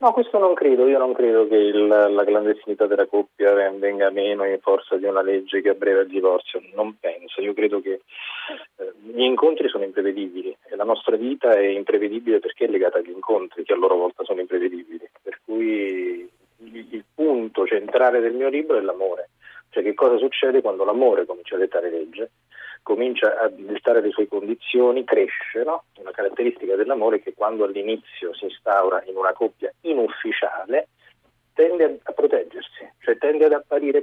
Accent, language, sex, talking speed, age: native, Italian, male, 175 wpm, 30-49